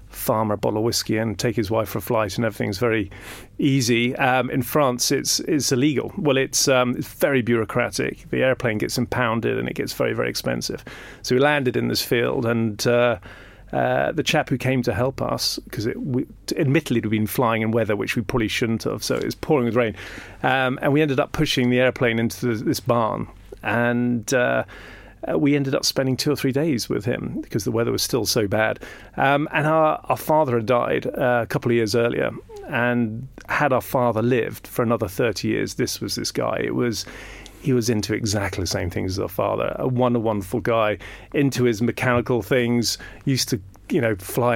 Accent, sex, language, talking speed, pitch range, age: British, male, English, 210 wpm, 110-130 Hz, 40-59